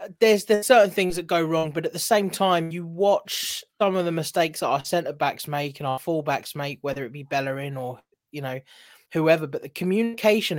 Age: 20-39